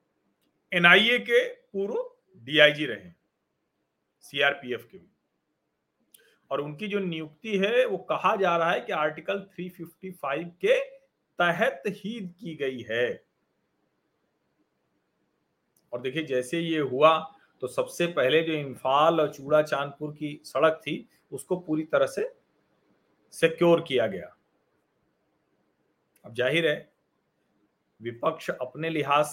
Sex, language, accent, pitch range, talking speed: male, Hindi, native, 145-180 Hz, 115 wpm